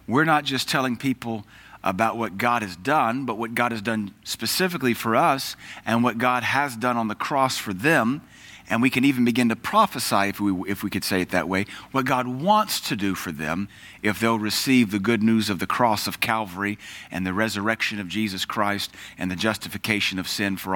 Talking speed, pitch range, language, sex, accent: 215 wpm, 100-130 Hz, English, male, American